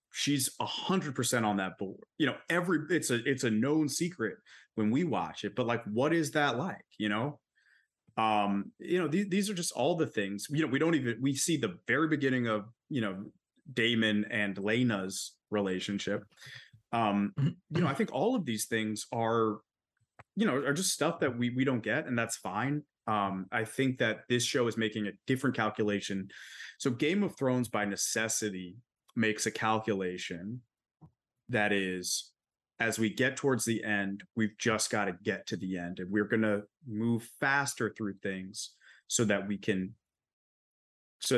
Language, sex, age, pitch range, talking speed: English, male, 30-49, 100-130 Hz, 185 wpm